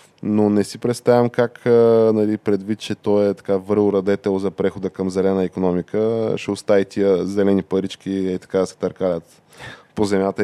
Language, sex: Bulgarian, male